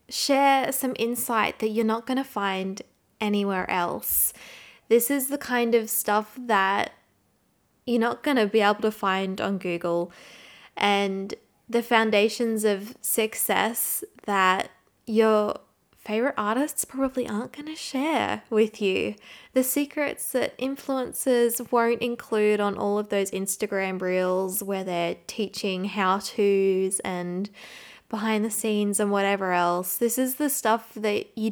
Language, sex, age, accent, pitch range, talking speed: English, female, 20-39, Australian, 200-250 Hz, 140 wpm